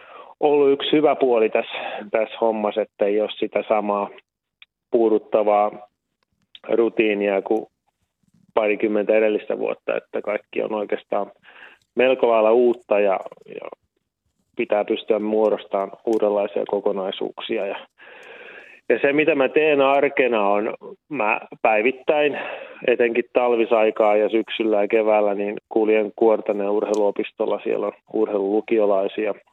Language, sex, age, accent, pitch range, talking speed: Finnish, male, 30-49, native, 105-125 Hz, 110 wpm